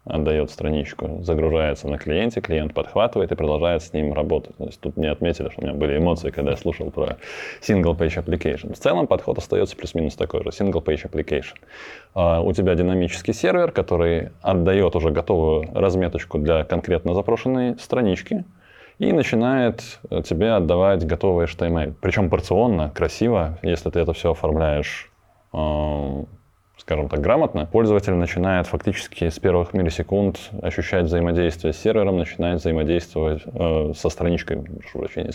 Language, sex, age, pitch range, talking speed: Russian, male, 20-39, 80-95 Hz, 150 wpm